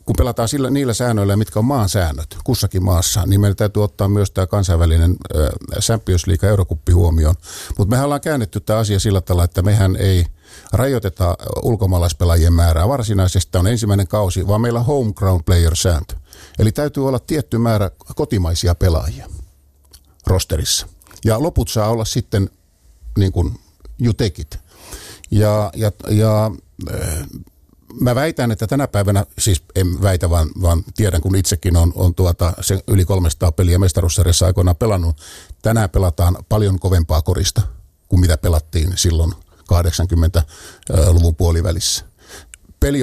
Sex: male